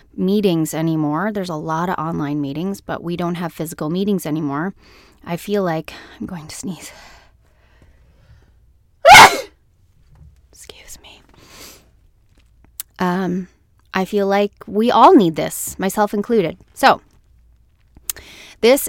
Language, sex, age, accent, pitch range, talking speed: English, female, 20-39, American, 155-195 Hz, 115 wpm